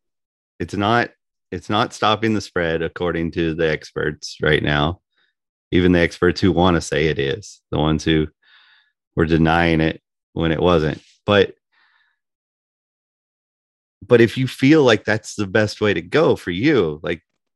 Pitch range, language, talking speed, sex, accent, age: 80-105 Hz, English, 155 wpm, male, American, 30-49